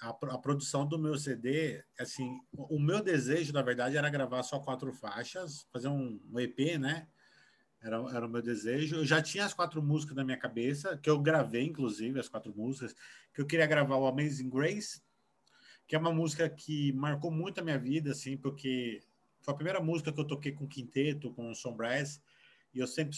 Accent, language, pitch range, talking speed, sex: Brazilian, Portuguese, 125-155 Hz, 195 wpm, male